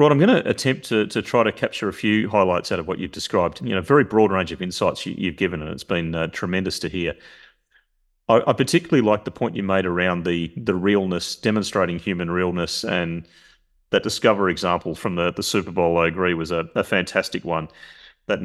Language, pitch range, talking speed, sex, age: English, 85-100 Hz, 225 wpm, male, 30-49